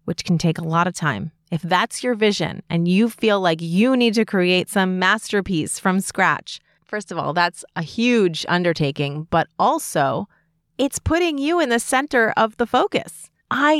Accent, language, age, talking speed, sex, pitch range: American, English, 30-49, 185 wpm, female, 170-230 Hz